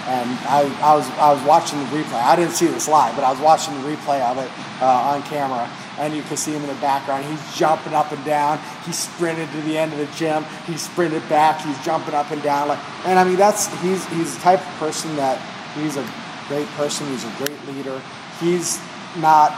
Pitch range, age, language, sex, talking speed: 140-155 Hz, 40-59, English, male, 235 wpm